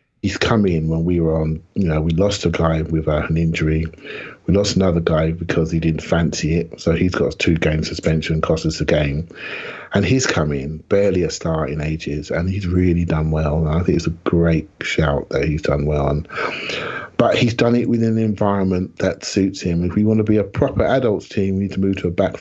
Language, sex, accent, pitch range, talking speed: English, male, British, 80-100 Hz, 235 wpm